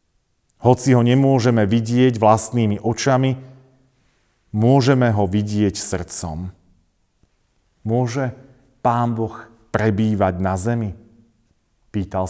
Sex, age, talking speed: male, 40-59, 85 wpm